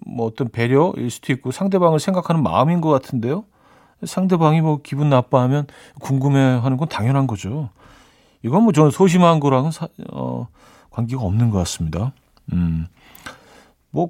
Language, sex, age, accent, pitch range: Korean, male, 40-59, native, 115-160 Hz